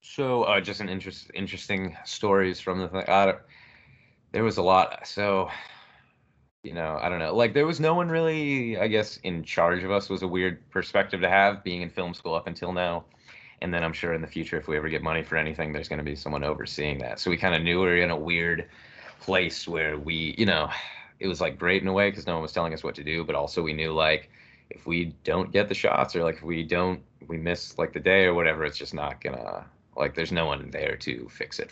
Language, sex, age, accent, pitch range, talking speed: English, male, 20-39, American, 80-95 Hz, 250 wpm